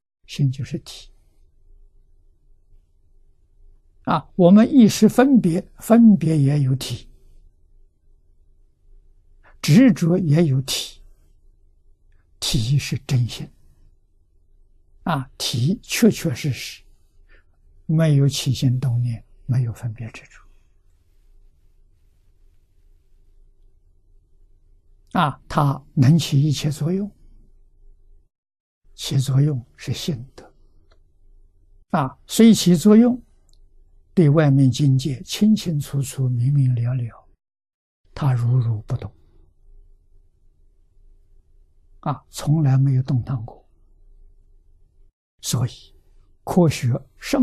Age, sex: 60-79, male